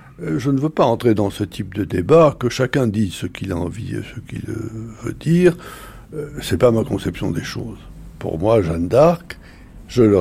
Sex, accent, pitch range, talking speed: male, French, 100-140 Hz, 200 wpm